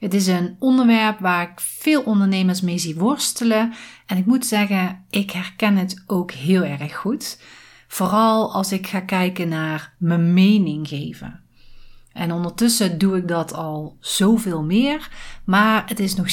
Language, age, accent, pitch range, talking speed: Dutch, 40-59, Dutch, 180-225 Hz, 160 wpm